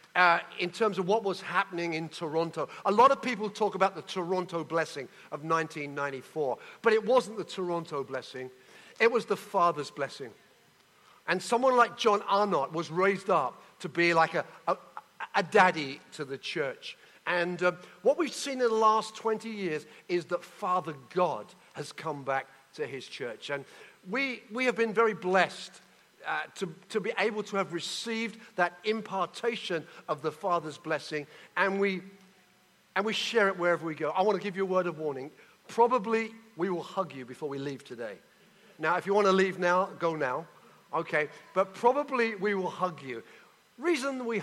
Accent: British